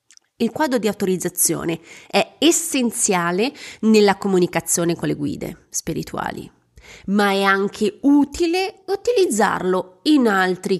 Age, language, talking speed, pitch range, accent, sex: 30-49, Italian, 105 wpm, 175-230 Hz, native, female